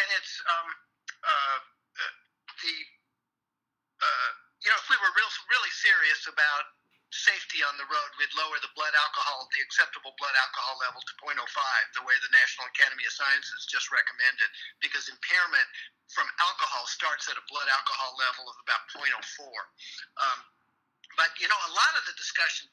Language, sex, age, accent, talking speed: English, male, 50-69, American, 165 wpm